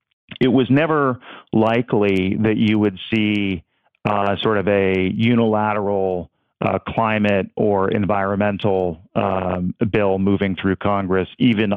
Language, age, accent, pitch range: English, 40-59, American, 100-115 Hz